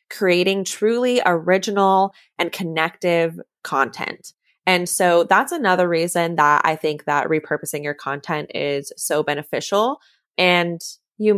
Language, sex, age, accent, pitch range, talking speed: English, female, 20-39, American, 165-210 Hz, 120 wpm